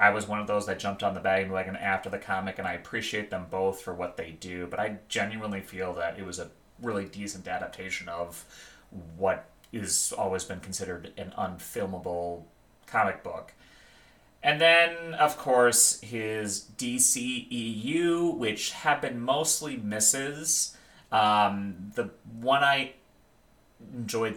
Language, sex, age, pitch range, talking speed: English, male, 30-49, 95-115 Hz, 145 wpm